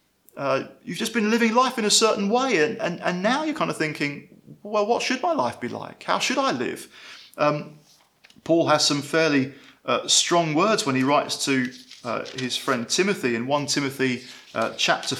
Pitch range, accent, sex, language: 135-195 Hz, British, male, English